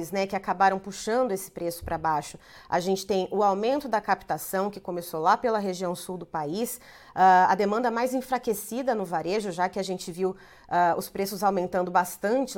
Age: 30-49